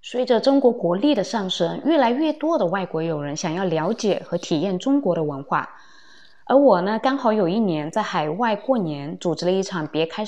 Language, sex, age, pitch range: Chinese, female, 20-39, 170-230 Hz